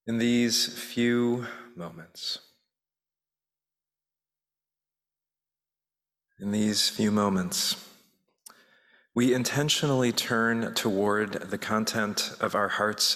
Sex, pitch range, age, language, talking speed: male, 95-120 Hz, 40-59, English, 80 wpm